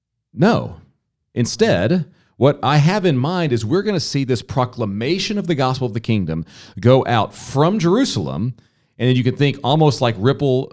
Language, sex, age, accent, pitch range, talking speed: English, male, 40-59, American, 105-140 Hz, 180 wpm